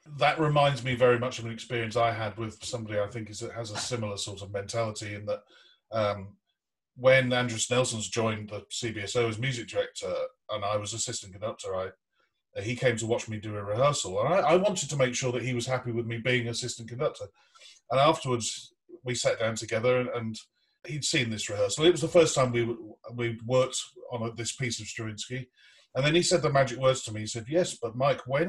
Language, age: English, 40-59